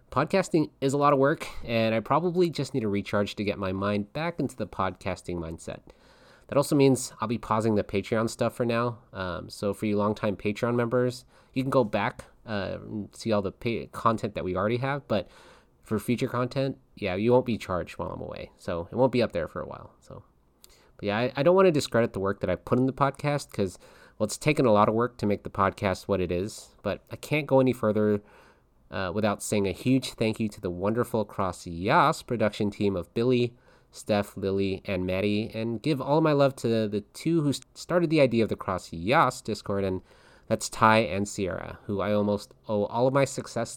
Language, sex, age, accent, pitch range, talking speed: English, male, 30-49, American, 100-130 Hz, 225 wpm